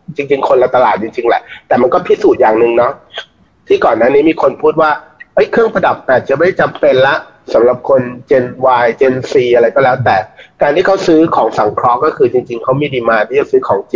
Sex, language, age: male, Thai, 30-49